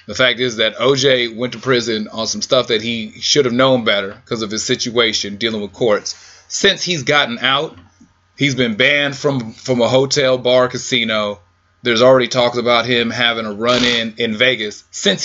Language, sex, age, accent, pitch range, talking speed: English, male, 30-49, American, 110-145 Hz, 195 wpm